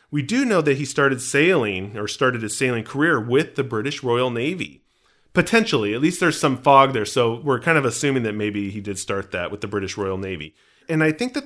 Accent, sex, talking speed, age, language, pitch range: American, male, 230 wpm, 40-59, English, 110-150 Hz